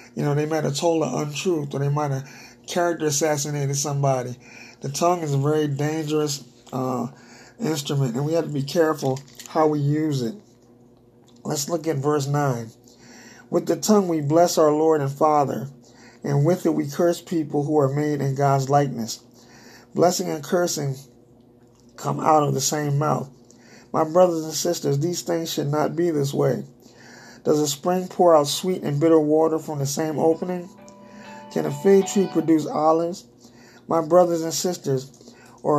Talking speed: 175 wpm